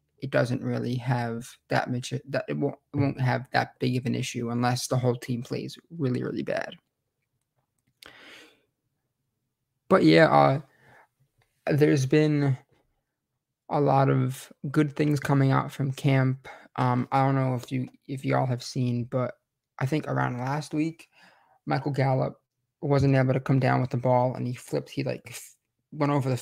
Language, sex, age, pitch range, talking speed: English, male, 20-39, 125-140 Hz, 170 wpm